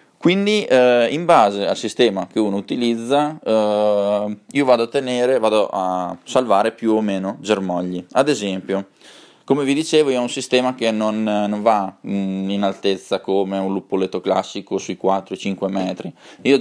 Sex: male